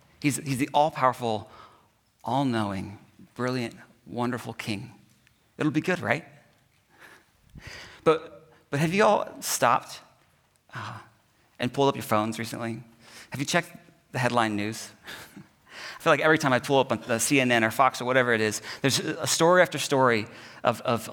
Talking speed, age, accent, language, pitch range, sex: 155 wpm, 40-59, American, English, 125-155 Hz, male